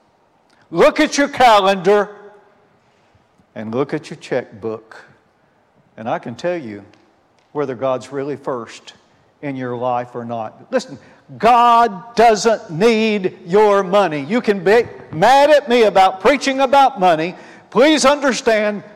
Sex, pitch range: male, 150-240 Hz